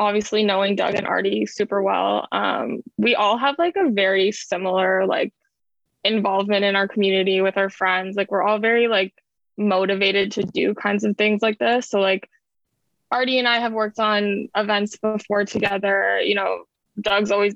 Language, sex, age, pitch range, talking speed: English, female, 10-29, 195-230 Hz, 175 wpm